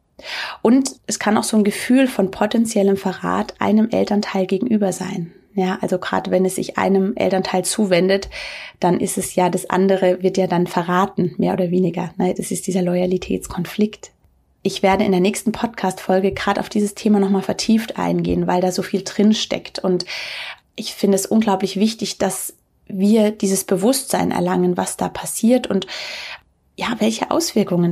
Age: 30-49